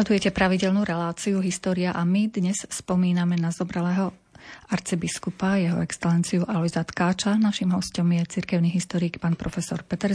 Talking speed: 140 wpm